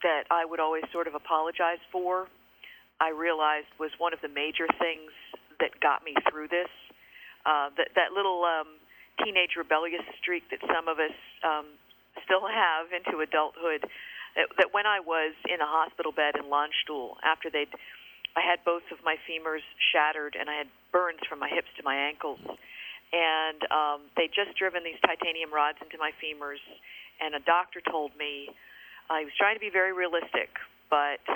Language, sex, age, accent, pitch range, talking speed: English, female, 50-69, American, 155-185 Hz, 180 wpm